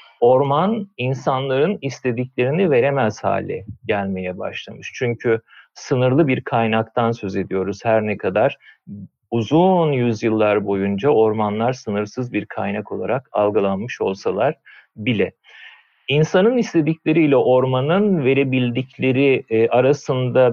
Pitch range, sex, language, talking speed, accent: 110-140 Hz, male, Turkish, 95 wpm, native